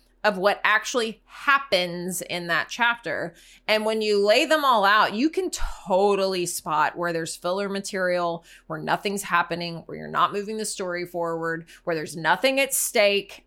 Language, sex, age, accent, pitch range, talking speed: English, female, 20-39, American, 175-215 Hz, 165 wpm